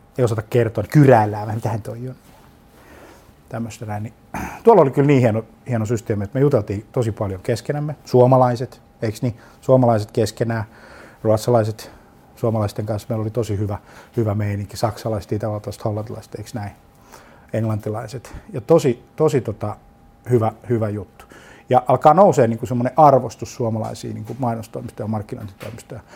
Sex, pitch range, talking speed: male, 110-130 Hz, 135 wpm